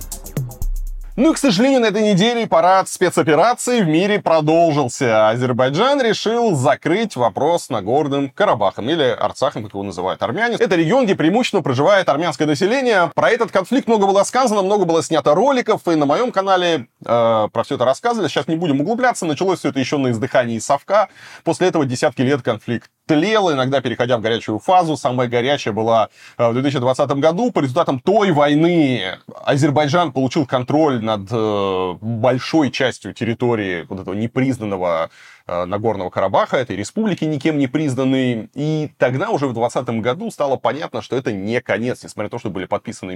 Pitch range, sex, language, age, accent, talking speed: 115-175 Hz, male, Russian, 20-39, native, 165 wpm